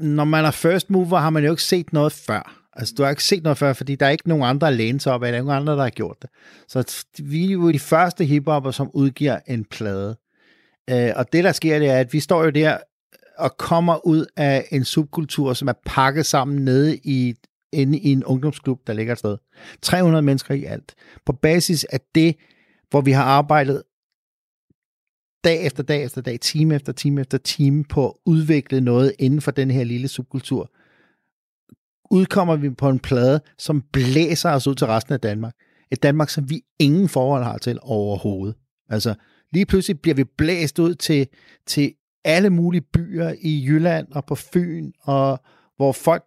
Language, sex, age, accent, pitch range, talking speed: Danish, male, 50-69, native, 130-160 Hz, 195 wpm